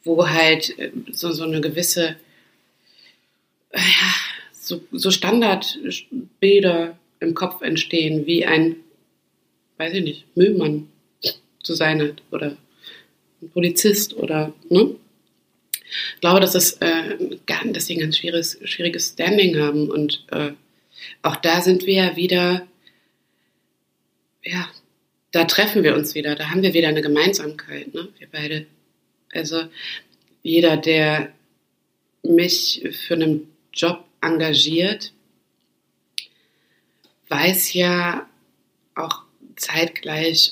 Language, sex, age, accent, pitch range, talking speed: German, female, 30-49, German, 150-180 Hz, 110 wpm